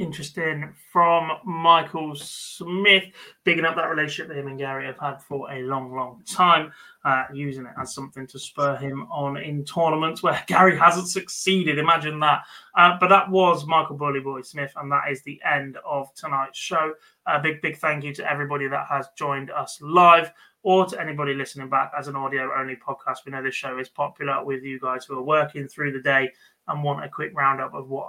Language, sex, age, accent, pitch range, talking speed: English, male, 20-39, British, 135-165 Hz, 205 wpm